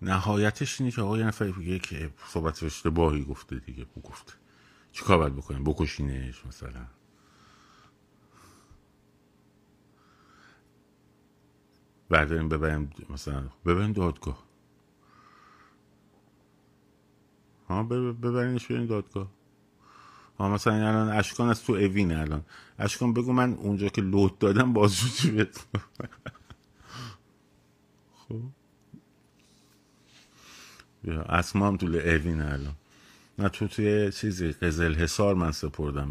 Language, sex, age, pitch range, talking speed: Persian, male, 50-69, 75-110 Hz, 95 wpm